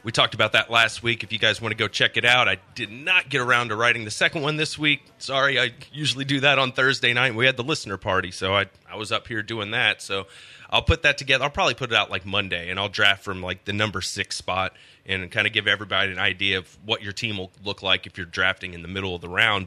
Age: 30-49